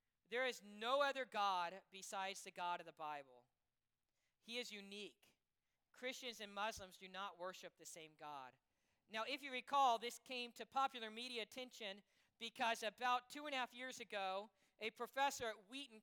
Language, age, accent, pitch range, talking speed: English, 50-69, American, 180-240 Hz, 170 wpm